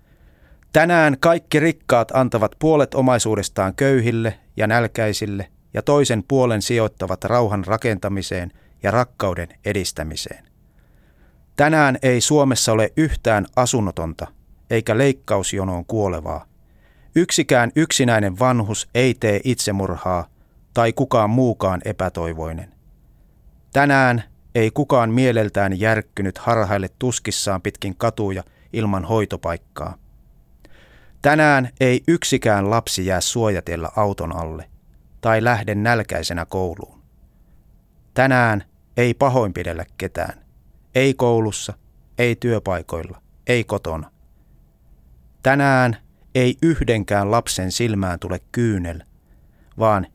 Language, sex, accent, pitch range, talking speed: Finnish, male, native, 90-125 Hz, 95 wpm